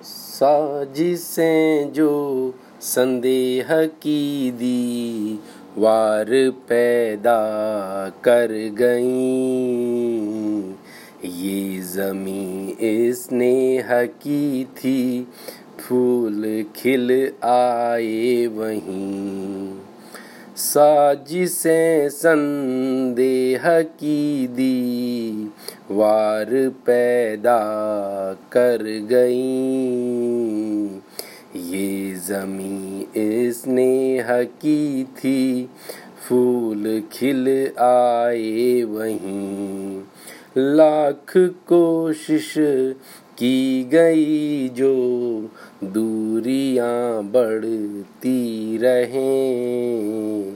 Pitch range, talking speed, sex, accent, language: 110-130 Hz, 50 wpm, male, native, Hindi